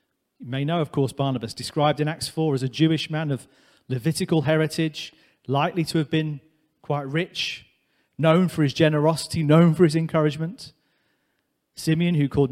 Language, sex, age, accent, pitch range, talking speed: English, male, 40-59, British, 145-165 Hz, 165 wpm